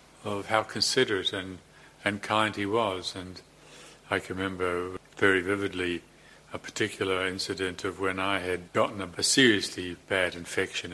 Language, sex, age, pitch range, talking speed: English, male, 50-69, 90-100 Hz, 150 wpm